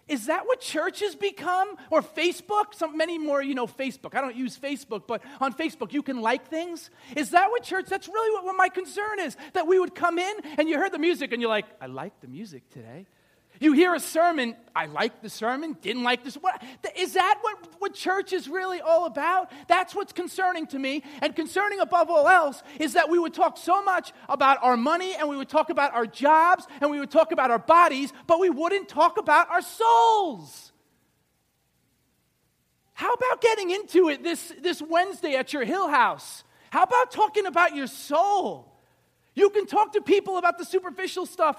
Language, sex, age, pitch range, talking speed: English, male, 40-59, 260-360 Hz, 205 wpm